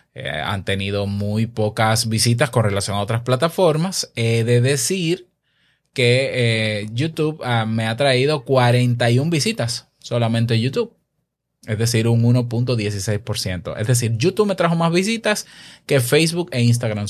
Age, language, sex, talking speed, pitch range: 20-39, Spanish, male, 140 wpm, 110-160 Hz